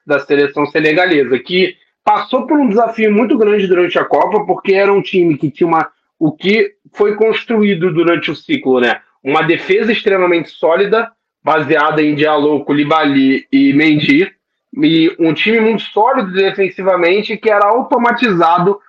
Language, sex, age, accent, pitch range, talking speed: Portuguese, male, 20-39, Brazilian, 175-230 Hz, 150 wpm